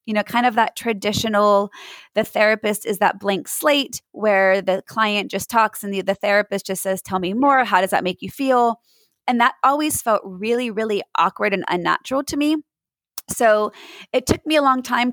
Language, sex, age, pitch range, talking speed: English, female, 30-49, 200-255 Hz, 200 wpm